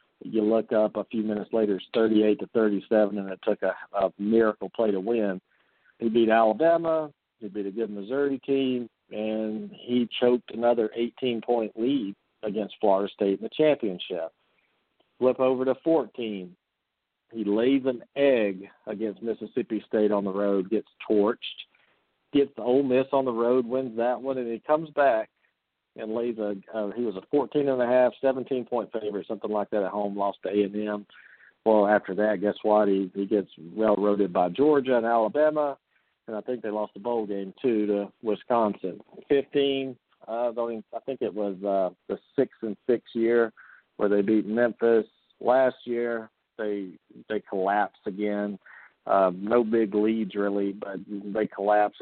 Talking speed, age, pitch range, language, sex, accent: 160 wpm, 50-69, 105-125 Hz, English, male, American